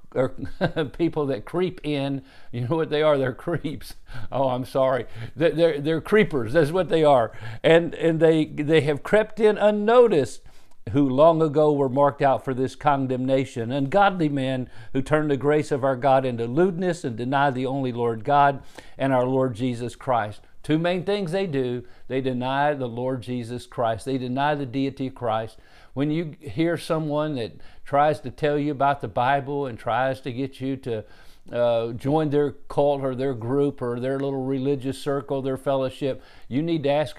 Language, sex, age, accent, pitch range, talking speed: English, male, 50-69, American, 120-145 Hz, 185 wpm